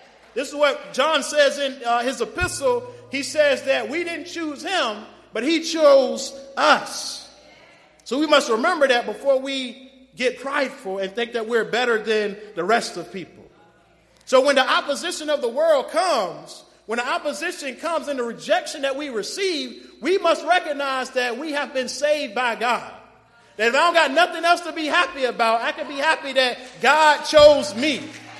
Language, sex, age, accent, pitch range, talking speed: English, male, 30-49, American, 260-335 Hz, 180 wpm